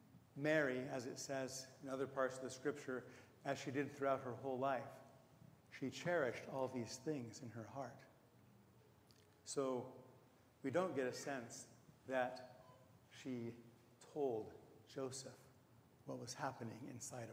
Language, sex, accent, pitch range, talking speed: English, male, American, 120-145 Hz, 135 wpm